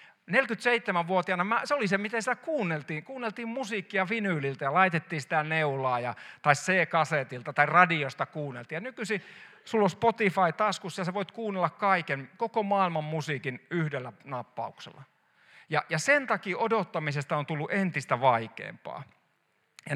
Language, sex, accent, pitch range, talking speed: Finnish, male, native, 150-200 Hz, 140 wpm